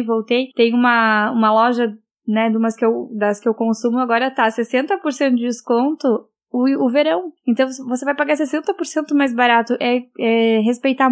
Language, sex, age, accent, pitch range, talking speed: Portuguese, female, 10-29, Brazilian, 225-275 Hz, 150 wpm